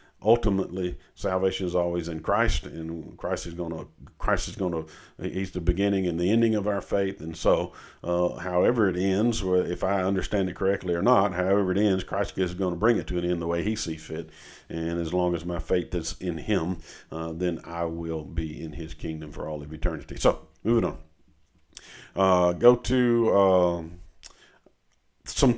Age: 50-69